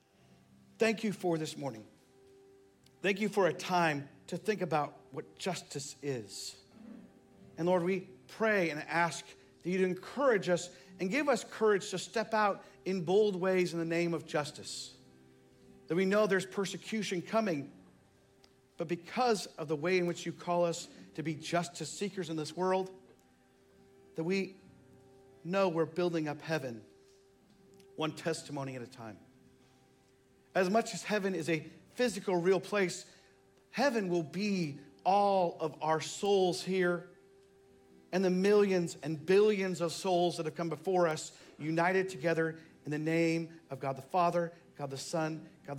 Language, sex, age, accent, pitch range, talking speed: English, male, 50-69, American, 140-190 Hz, 155 wpm